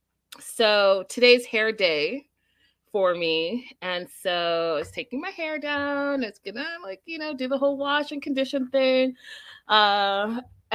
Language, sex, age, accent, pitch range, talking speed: English, female, 30-49, American, 175-235 Hz, 150 wpm